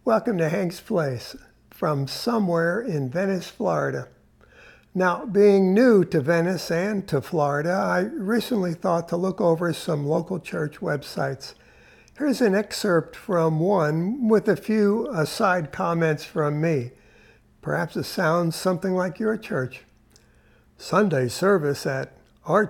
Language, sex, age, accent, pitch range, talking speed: English, male, 60-79, American, 150-200 Hz, 130 wpm